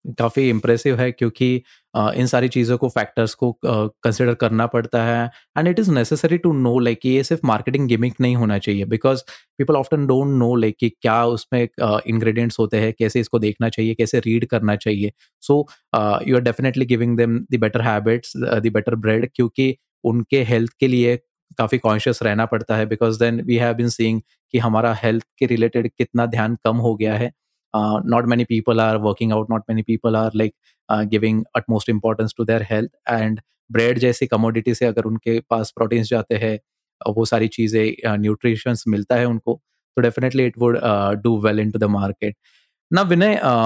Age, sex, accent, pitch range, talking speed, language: 20-39, male, native, 110-125 Hz, 185 wpm, Hindi